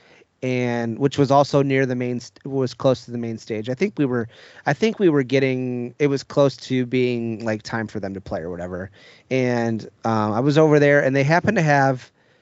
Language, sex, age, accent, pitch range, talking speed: English, male, 30-49, American, 115-140 Hz, 225 wpm